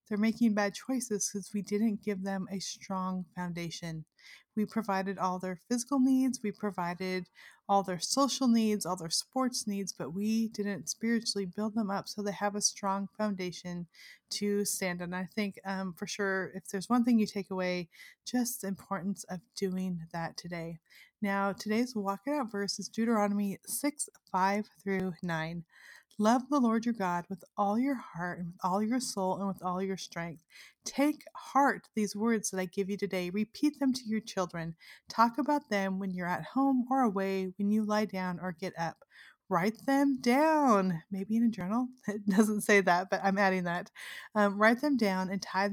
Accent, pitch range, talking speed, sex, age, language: American, 185-225 Hz, 190 wpm, female, 30-49, English